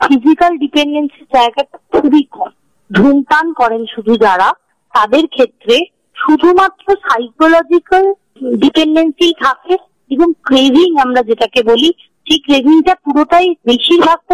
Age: 50-69